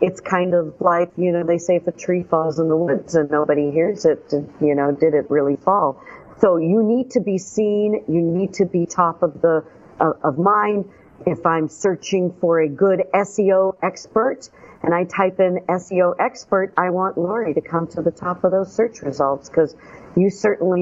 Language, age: English, 50-69